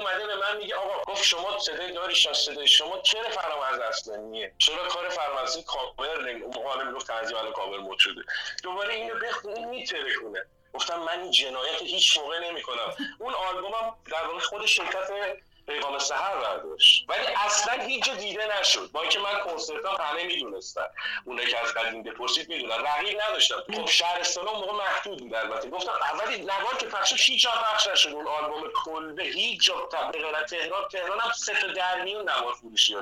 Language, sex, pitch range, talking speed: Persian, male, 155-210 Hz, 185 wpm